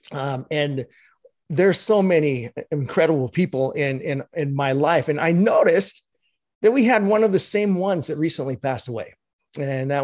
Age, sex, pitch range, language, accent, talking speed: 30-49, male, 130-165 Hz, English, American, 175 wpm